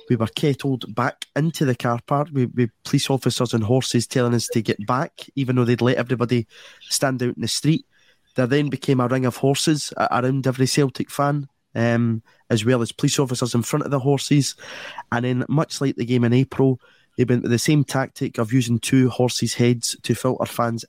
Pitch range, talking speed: 120-140 Hz, 205 wpm